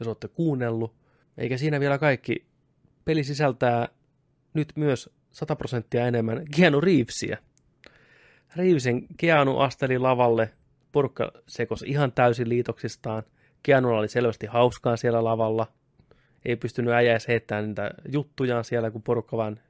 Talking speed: 125 wpm